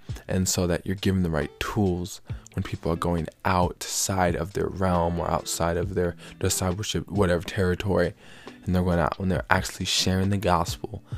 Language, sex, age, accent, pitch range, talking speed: English, male, 20-39, American, 85-100 Hz, 175 wpm